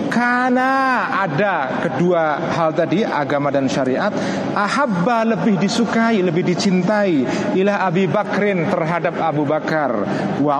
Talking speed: 115 wpm